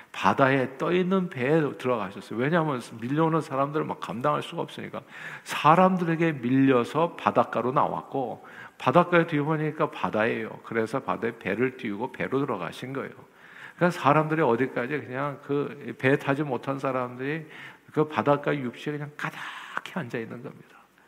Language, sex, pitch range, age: Korean, male, 120-155 Hz, 50-69